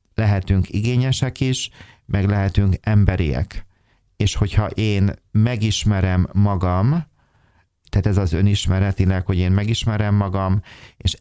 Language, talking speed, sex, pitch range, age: Hungarian, 105 wpm, male, 95-105 Hz, 30-49